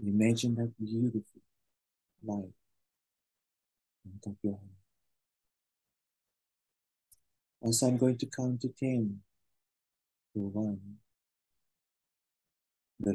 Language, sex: Japanese, male